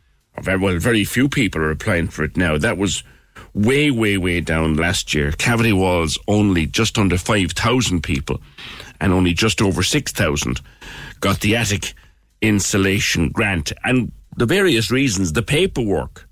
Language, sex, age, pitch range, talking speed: English, male, 60-79, 85-115 Hz, 145 wpm